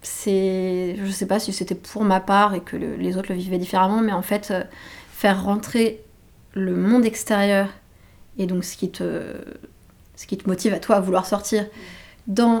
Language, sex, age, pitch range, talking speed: French, female, 20-39, 175-205 Hz, 195 wpm